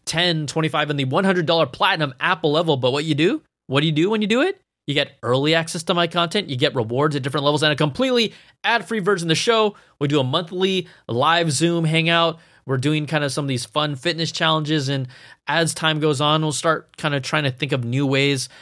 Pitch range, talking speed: 130-165 Hz, 235 wpm